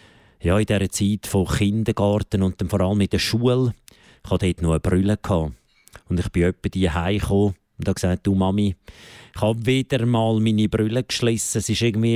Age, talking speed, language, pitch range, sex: 50-69, 195 wpm, German, 100-120 Hz, male